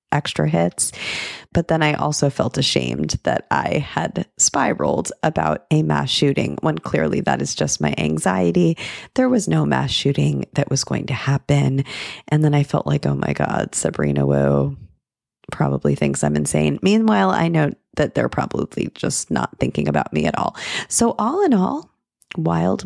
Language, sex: English, female